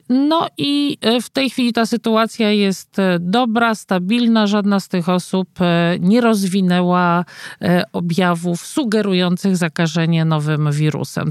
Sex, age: male, 50-69